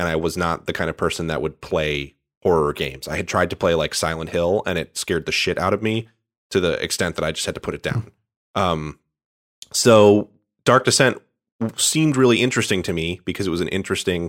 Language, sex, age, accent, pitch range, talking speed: English, male, 30-49, American, 80-95 Hz, 225 wpm